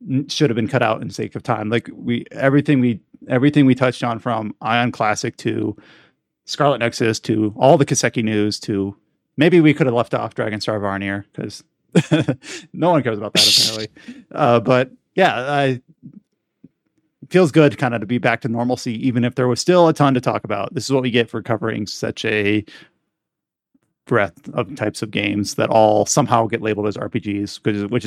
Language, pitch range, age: English, 110-135 Hz, 30-49